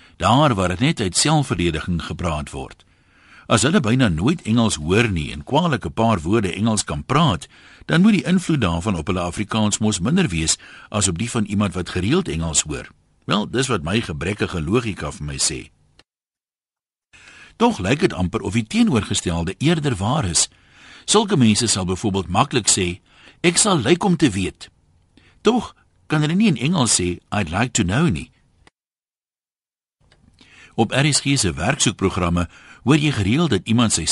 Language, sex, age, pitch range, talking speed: Dutch, male, 60-79, 90-135 Hz, 170 wpm